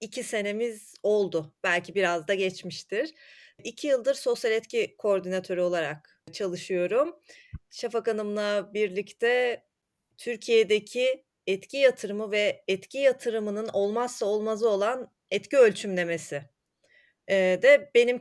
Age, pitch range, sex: 30-49, 205-265 Hz, female